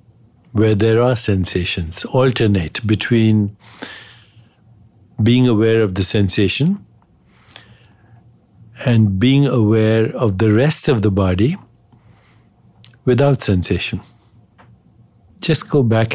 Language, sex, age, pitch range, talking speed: English, male, 60-79, 105-120 Hz, 95 wpm